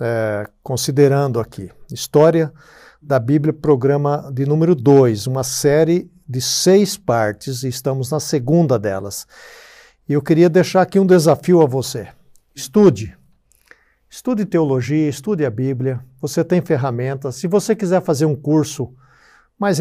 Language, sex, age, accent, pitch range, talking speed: Portuguese, male, 60-79, Brazilian, 130-160 Hz, 135 wpm